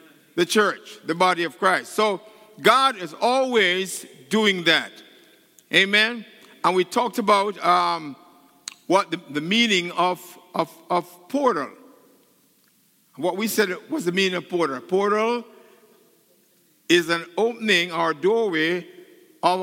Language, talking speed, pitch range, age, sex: English, 125 wpm, 160-215 Hz, 50-69, male